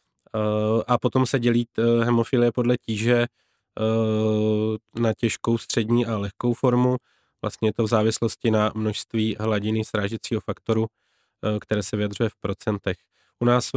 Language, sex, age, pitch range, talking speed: Czech, male, 20-39, 105-120 Hz, 135 wpm